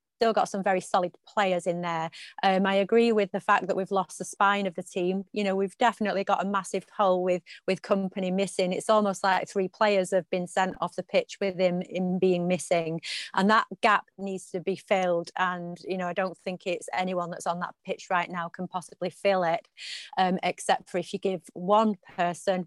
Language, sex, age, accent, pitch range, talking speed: English, female, 30-49, British, 180-200 Hz, 220 wpm